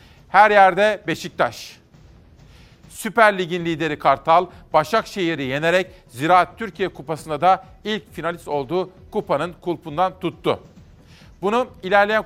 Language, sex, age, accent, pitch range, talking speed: Turkish, male, 50-69, native, 155-185 Hz, 105 wpm